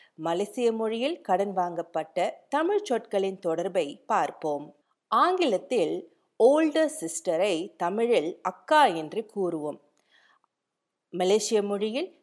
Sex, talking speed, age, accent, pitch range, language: female, 85 wpm, 50-69, native, 185-305 Hz, Tamil